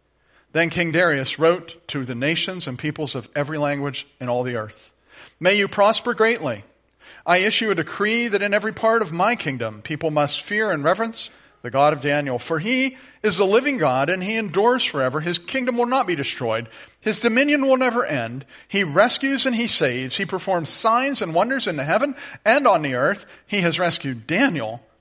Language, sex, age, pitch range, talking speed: English, male, 40-59, 125-190 Hz, 195 wpm